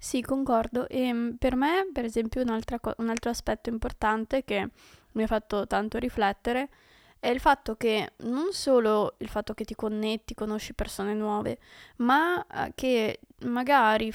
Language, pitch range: Italian, 215-255 Hz